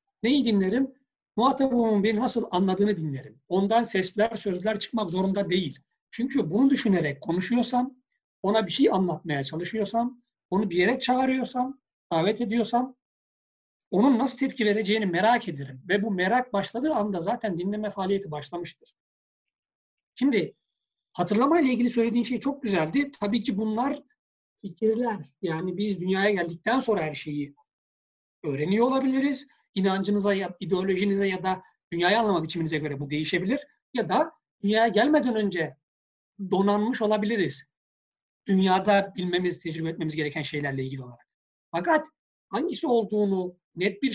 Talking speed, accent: 130 wpm, native